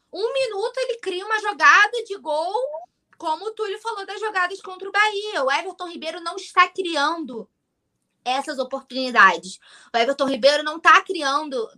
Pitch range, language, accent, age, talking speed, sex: 305-430 Hz, Portuguese, Brazilian, 20-39, 160 wpm, female